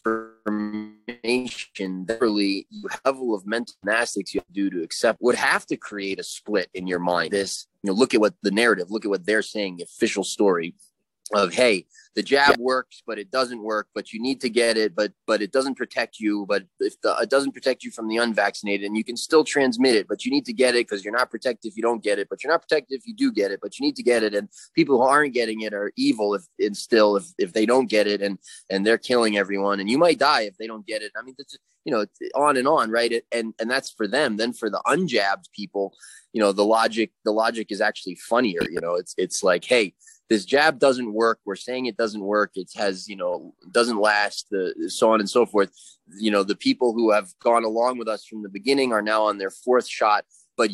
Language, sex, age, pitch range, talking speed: English, male, 20-39, 100-125 Hz, 255 wpm